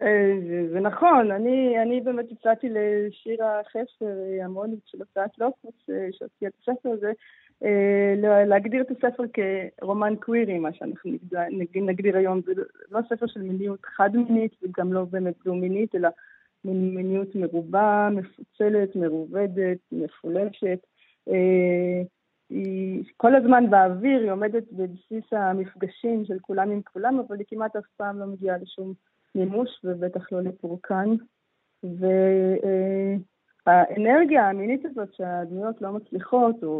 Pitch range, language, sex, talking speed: 185-225 Hz, Hebrew, female, 120 wpm